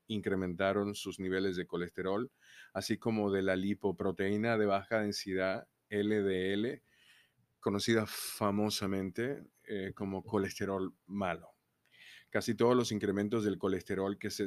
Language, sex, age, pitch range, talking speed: Spanish, male, 30-49, 95-110 Hz, 115 wpm